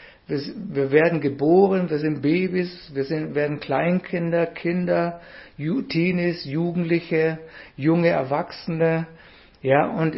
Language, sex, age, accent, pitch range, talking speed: German, male, 60-79, German, 140-170 Hz, 100 wpm